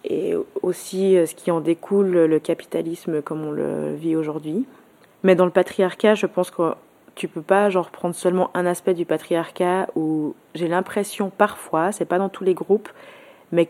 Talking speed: 190 wpm